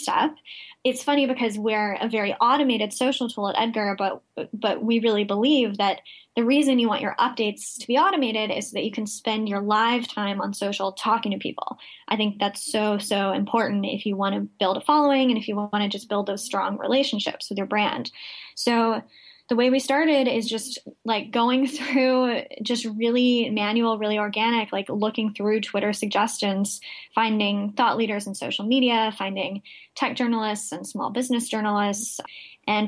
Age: 10-29